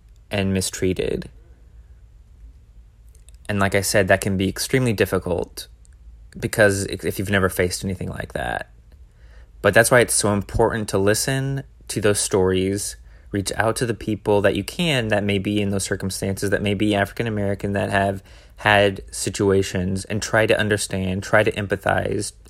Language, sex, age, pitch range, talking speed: English, male, 20-39, 90-105 Hz, 160 wpm